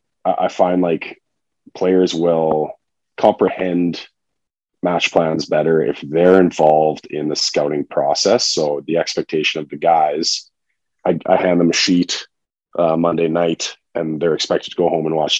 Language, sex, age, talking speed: English, male, 30-49, 150 wpm